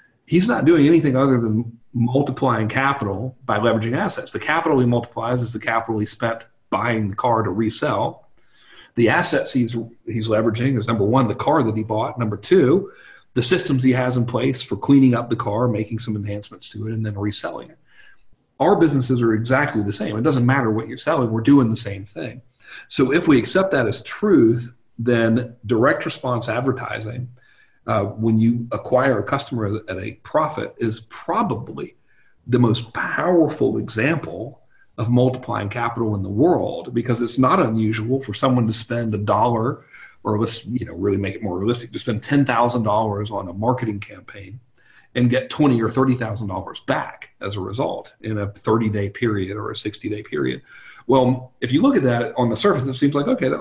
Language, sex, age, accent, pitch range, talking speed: English, male, 40-59, American, 110-130 Hz, 185 wpm